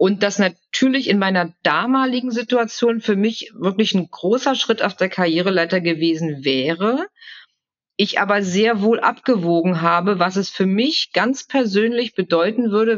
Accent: German